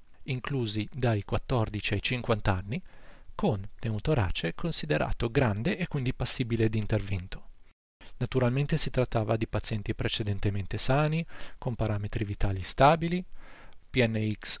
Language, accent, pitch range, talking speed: Italian, native, 105-135 Hz, 110 wpm